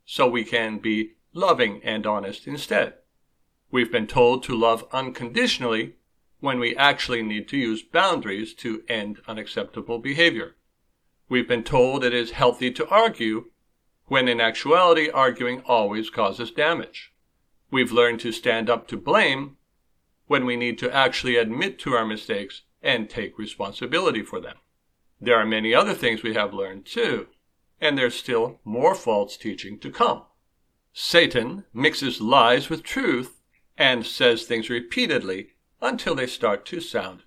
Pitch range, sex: 110-135 Hz, male